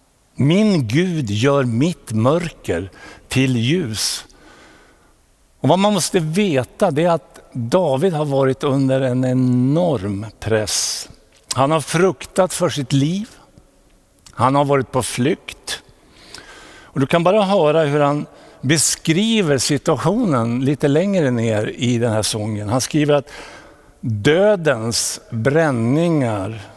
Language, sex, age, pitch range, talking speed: Swedish, male, 60-79, 125-165 Hz, 120 wpm